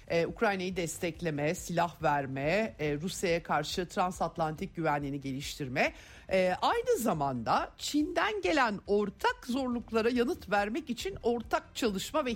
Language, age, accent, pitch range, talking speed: Turkish, 50-69, native, 155-240 Hz, 115 wpm